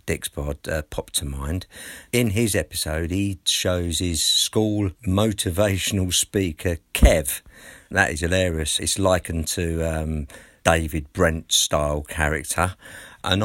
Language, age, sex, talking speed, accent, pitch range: English, 50-69, male, 115 wpm, British, 80-100 Hz